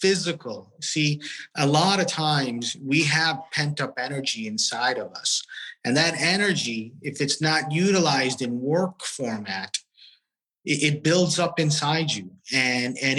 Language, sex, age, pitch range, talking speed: English, male, 30-49, 115-150 Hz, 145 wpm